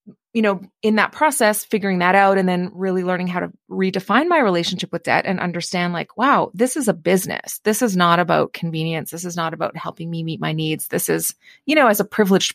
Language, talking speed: English, 230 wpm